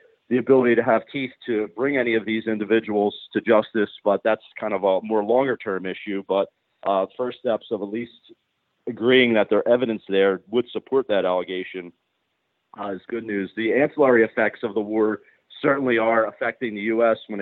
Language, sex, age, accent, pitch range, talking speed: English, male, 40-59, American, 105-120 Hz, 185 wpm